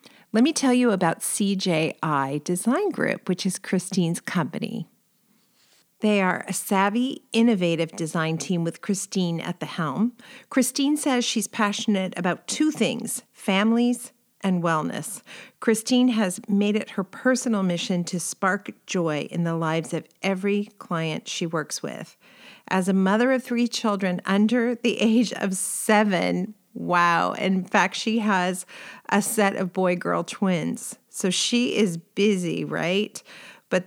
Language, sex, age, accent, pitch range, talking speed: English, female, 40-59, American, 180-230 Hz, 140 wpm